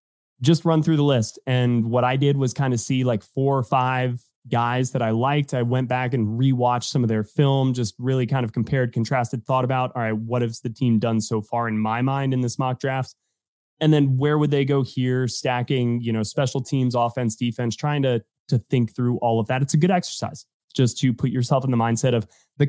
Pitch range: 115-140 Hz